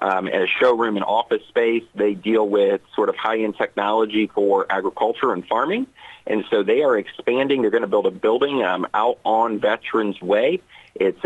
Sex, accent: male, American